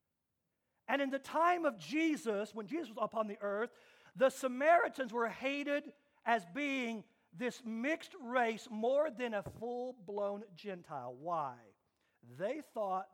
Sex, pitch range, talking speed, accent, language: male, 200-290 Hz, 135 wpm, American, English